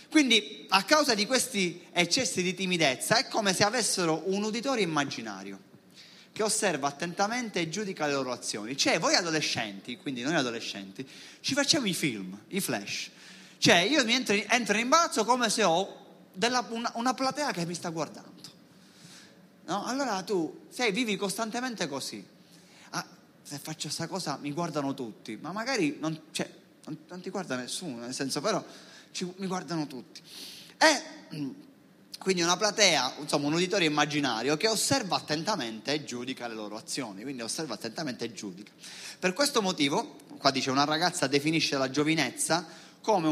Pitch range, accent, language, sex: 145-205 Hz, native, Italian, male